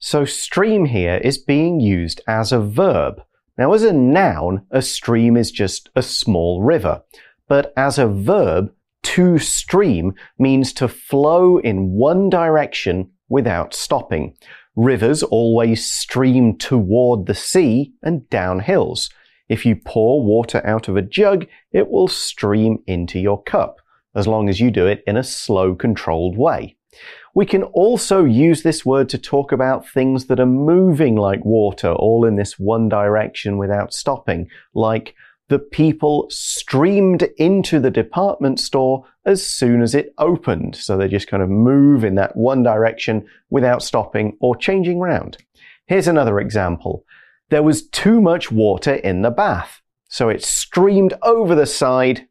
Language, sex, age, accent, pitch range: Chinese, male, 40-59, British, 105-150 Hz